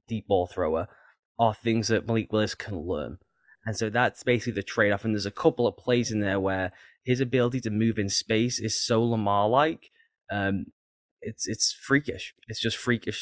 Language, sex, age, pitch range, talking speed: English, male, 10-29, 100-125 Hz, 195 wpm